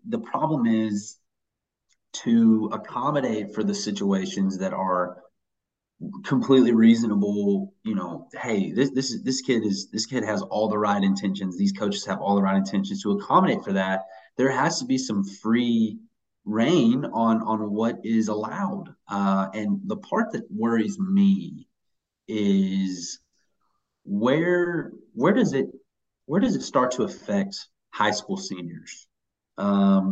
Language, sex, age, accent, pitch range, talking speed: English, male, 30-49, American, 100-170 Hz, 145 wpm